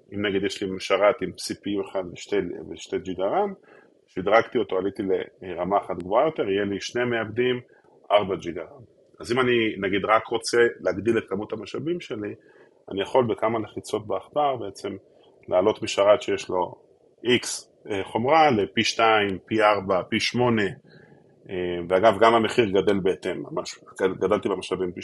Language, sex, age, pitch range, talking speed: Hebrew, male, 20-39, 100-165 Hz, 140 wpm